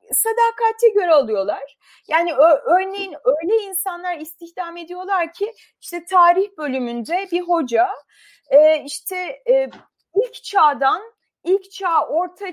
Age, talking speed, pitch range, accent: 30-49, 100 wpm, 290-400 Hz, native